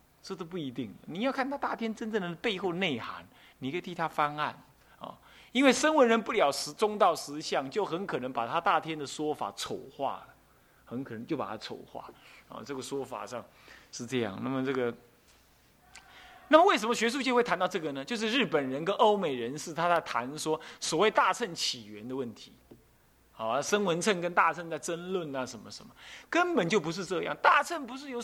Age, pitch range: 30-49, 140-220 Hz